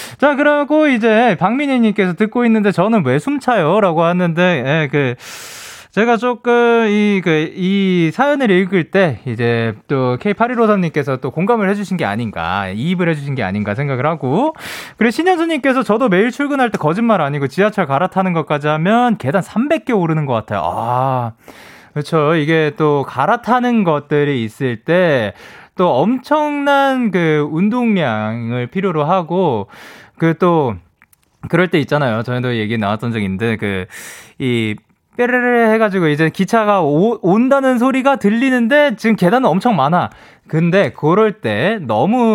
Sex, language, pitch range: male, Korean, 130-220 Hz